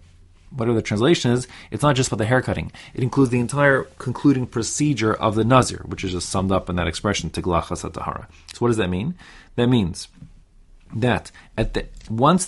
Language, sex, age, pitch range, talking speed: English, male, 30-49, 95-130 Hz, 190 wpm